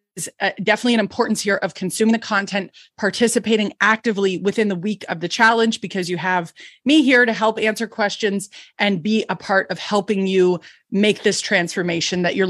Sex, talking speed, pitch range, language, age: female, 180 wpm, 195-225 Hz, English, 30-49